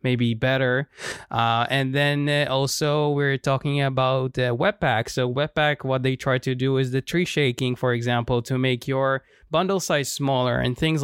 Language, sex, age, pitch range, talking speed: English, male, 20-39, 125-145 Hz, 180 wpm